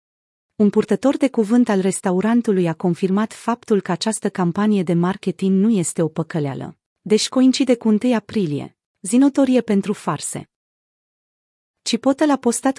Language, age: Romanian, 30-49